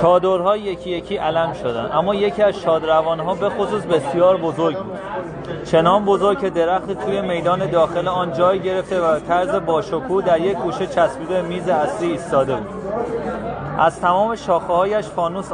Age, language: 30-49, Persian